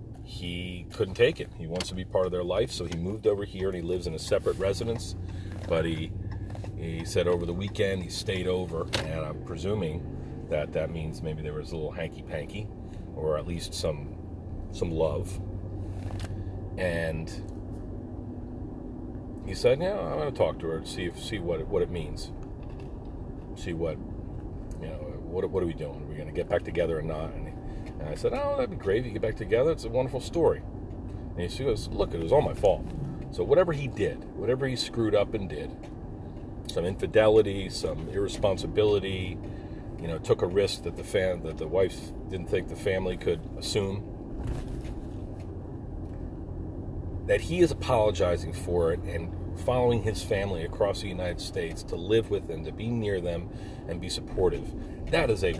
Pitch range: 85-105 Hz